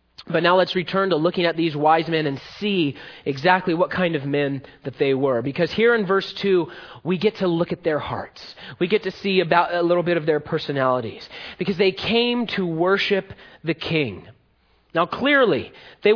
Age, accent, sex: 30-49, American, male